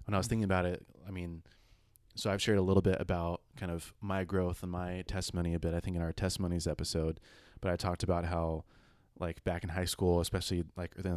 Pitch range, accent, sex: 85-100 Hz, American, male